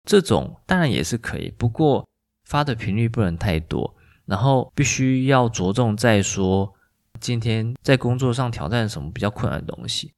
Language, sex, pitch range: Chinese, male, 100-135 Hz